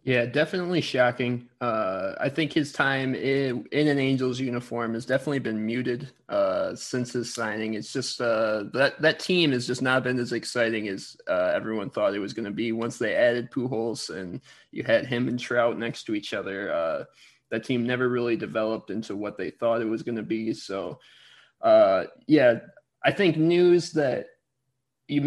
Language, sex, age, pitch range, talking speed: English, male, 20-39, 120-145 Hz, 190 wpm